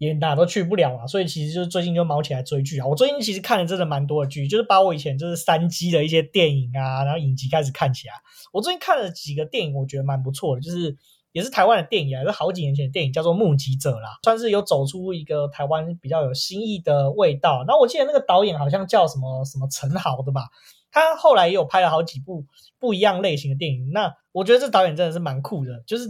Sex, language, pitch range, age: male, Chinese, 140-190 Hz, 20-39